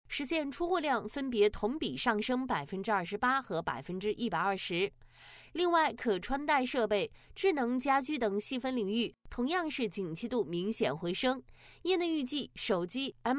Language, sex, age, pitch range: Chinese, female, 20-39, 210-295 Hz